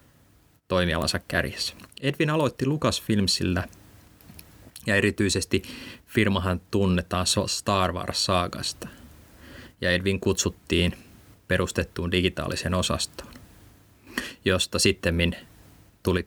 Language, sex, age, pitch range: Finnish, male, 30-49, 90-105 Hz